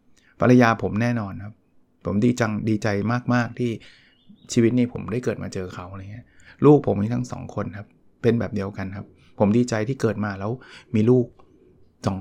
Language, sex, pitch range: Thai, male, 105-130 Hz